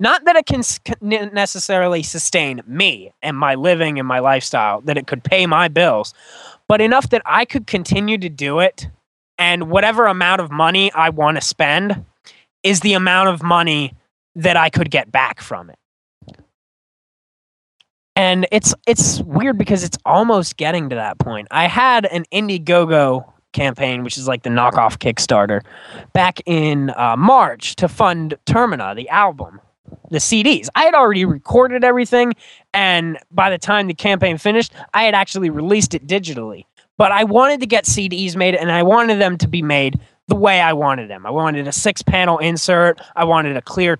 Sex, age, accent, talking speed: male, 20-39, American, 175 wpm